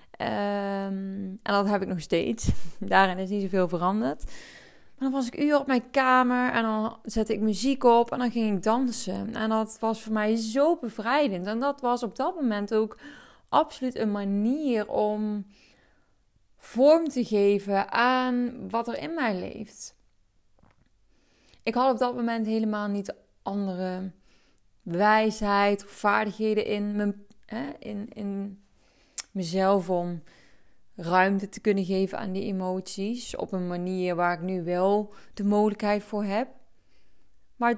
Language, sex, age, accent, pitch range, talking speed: Dutch, female, 20-39, Dutch, 200-240 Hz, 145 wpm